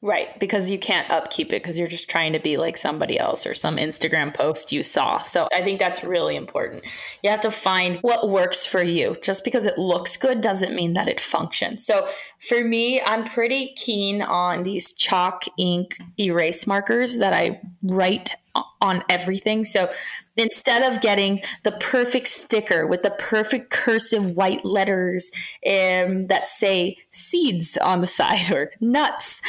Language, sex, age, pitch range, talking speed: English, female, 20-39, 180-220 Hz, 170 wpm